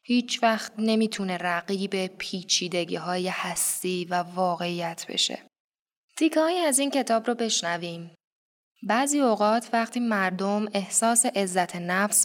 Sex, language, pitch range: female, Persian, 180-230 Hz